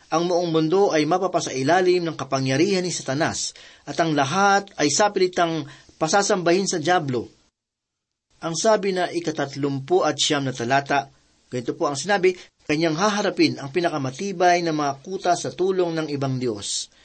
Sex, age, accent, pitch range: male, 40-59, native, 140-180 Hz